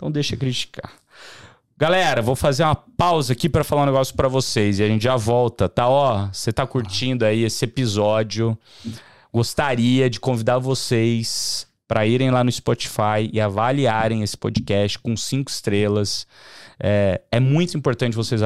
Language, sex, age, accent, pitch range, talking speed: Portuguese, male, 30-49, Brazilian, 105-130 Hz, 165 wpm